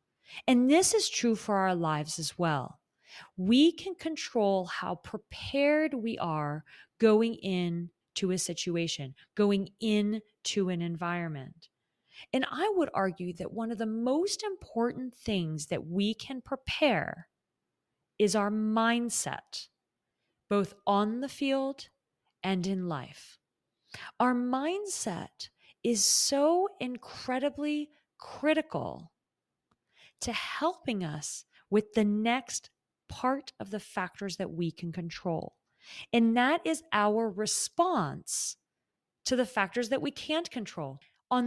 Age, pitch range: 30-49, 180-270 Hz